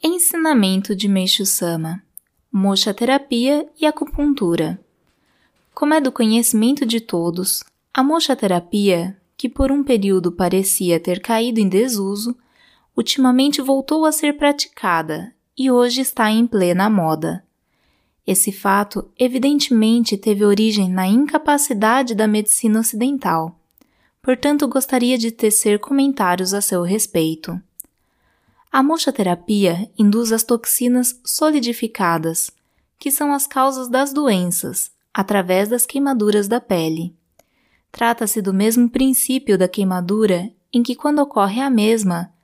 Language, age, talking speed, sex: Portuguese, 20-39, 115 wpm, female